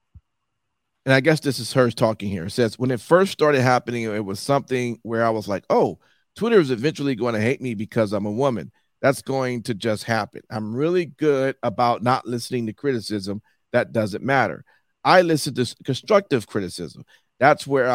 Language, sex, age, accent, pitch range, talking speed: English, male, 40-59, American, 115-140 Hz, 190 wpm